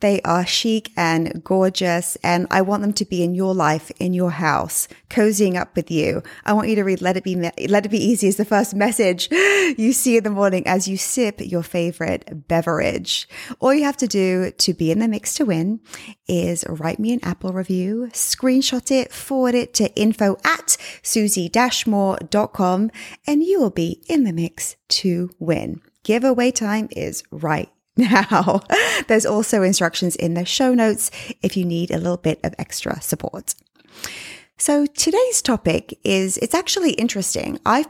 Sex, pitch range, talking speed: female, 175-230 Hz, 175 wpm